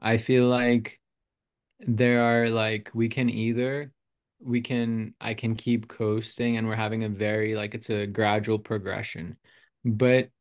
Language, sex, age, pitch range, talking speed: English, male, 20-39, 110-120 Hz, 150 wpm